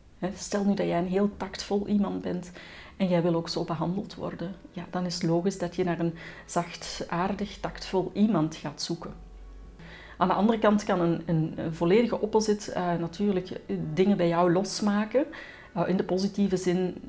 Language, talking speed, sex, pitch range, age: Dutch, 185 wpm, female, 170-210 Hz, 40-59